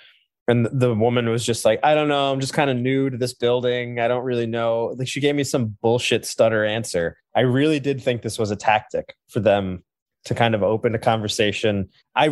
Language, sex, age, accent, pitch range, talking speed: English, male, 20-39, American, 110-135 Hz, 225 wpm